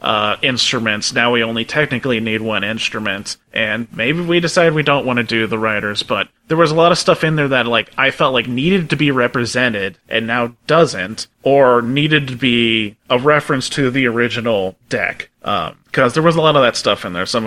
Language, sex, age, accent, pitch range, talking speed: English, male, 30-49, American, 120-170 Hz, 215 wpm